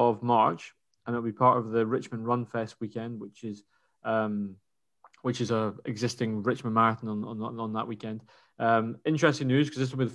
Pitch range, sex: 115-125 Hz, male